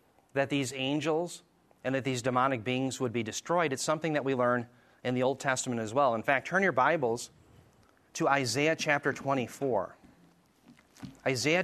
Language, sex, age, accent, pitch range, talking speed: English, male, 30-49, American, 125-160 Hz, 165 wpm